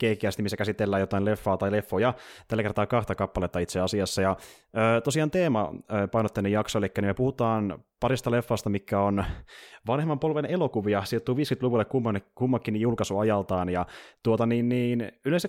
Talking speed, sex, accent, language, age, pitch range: 145 wpm, male, native, Finnish, 20-39, 100-125 Hz